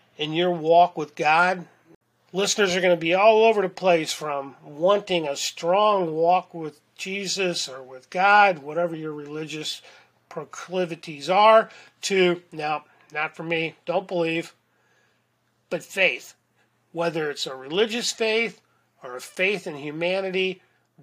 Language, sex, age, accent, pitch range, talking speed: English, male, 40-59, American, 150-190 Hz, 135 wpm